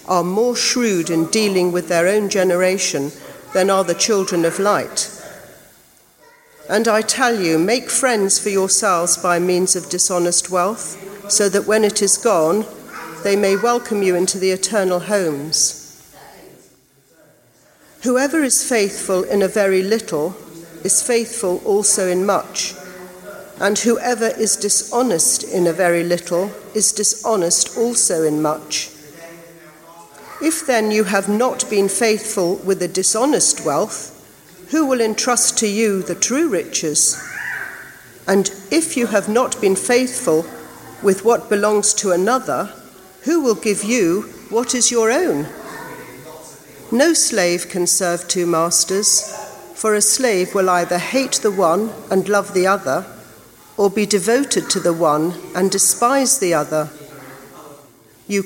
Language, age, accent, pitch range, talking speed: English, 50-69, British, 180-225 Hz, 140 wpm